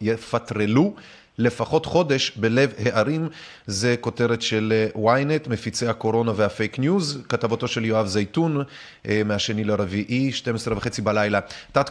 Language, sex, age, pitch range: Hebrew, male, 30-49, 110-150 Hz